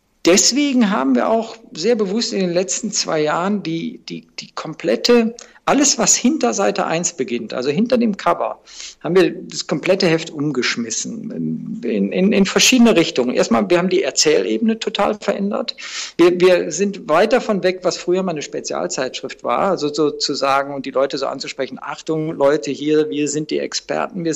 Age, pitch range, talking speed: 50-69, 155-220 Hz, 175 wpm